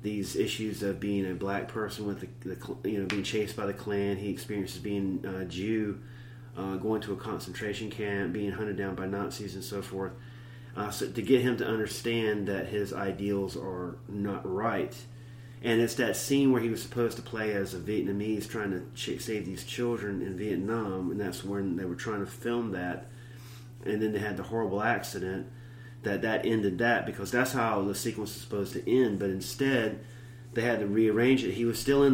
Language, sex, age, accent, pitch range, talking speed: English, male, 30-49, American, 100-120 Hz, 205 wpm